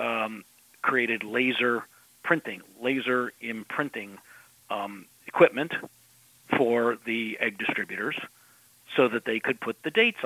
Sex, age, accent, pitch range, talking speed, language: male, 50-69, American, 110-125 Hz, 110 wpm, English